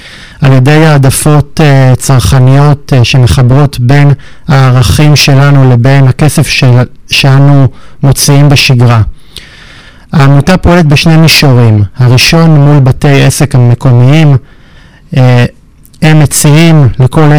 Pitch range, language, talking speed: 130-145 Hz, Hebrew, 100 wpm